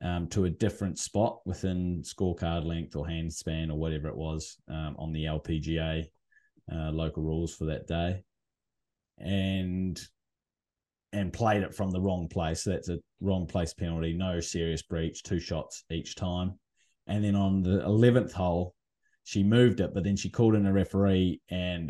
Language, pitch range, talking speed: English, 80-95 Hz, 175 wpm